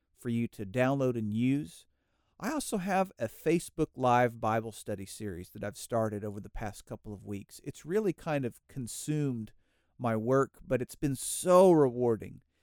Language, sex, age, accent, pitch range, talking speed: English, male, 50-69, American, 115-145 Hz, 170 wpm